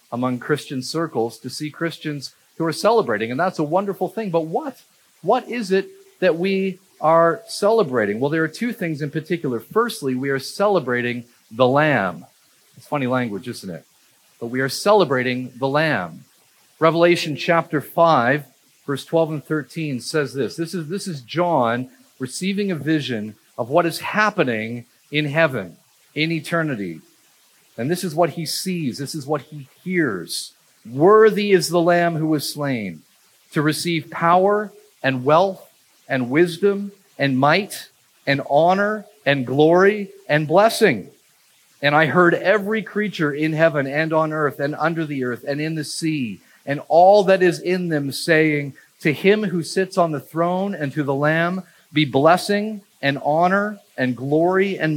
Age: 40-59